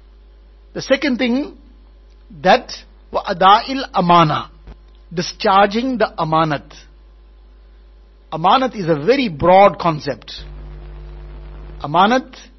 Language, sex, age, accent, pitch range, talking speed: English, male, 60-79, Indian, 160-235 Hz, 75 wpm